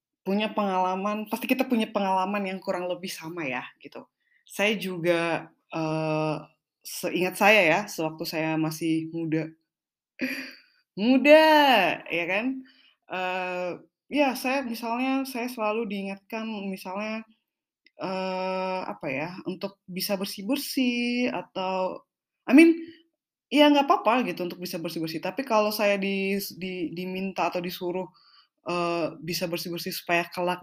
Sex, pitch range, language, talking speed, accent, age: female, 160-210 Hz, Indonesian, 120 wpm, native, 20-39